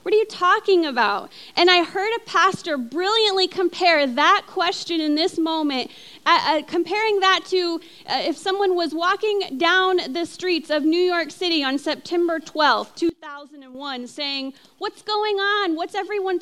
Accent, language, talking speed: American, English, 160 wpm